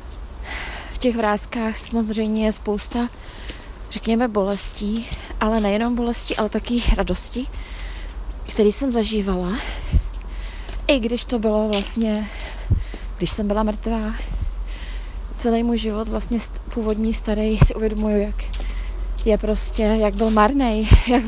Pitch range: 200-235 Hz